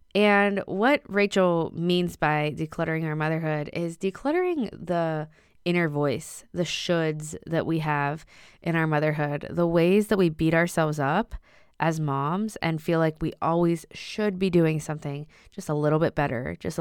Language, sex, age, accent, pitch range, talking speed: English, female, 20-39, American, 155-185 Hz, 160 wpm